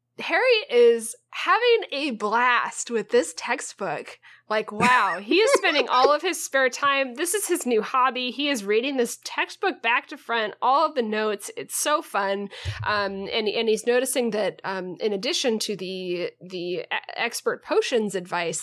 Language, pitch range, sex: English, 190-275 Hz, female